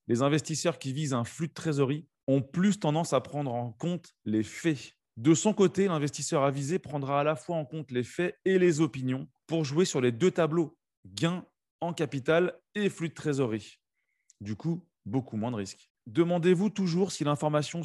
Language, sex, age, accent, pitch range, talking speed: French, male, 30-49, French, 120-165 Hz, 190 wpm